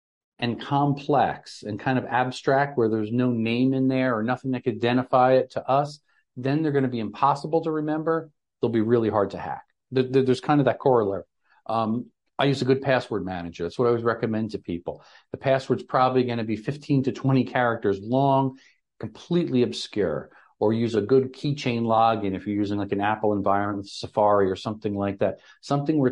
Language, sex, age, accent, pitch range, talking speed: English, male, 50-69, American, 110-135 Hz, 195 wpm